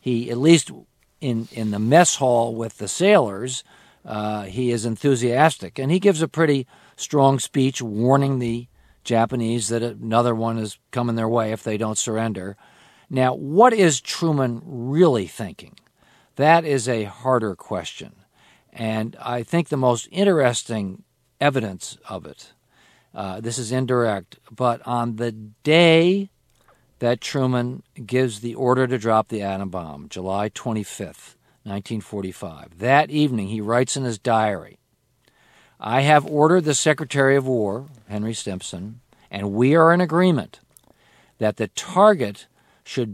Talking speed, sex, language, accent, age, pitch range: 140 wpm, male, English, American, 50-69, 110-145 Hz